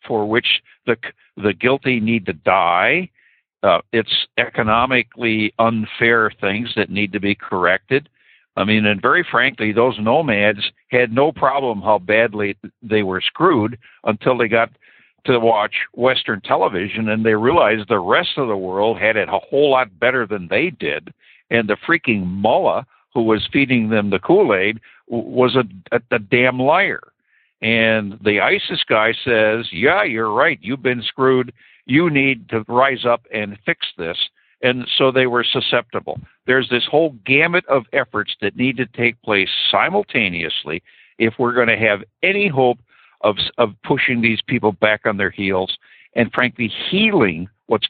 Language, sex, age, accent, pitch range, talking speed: English, male, 60-79, American, 105-130 Hz, 160 wpm